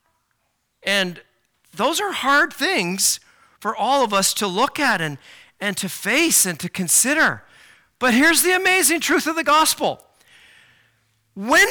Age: 50-69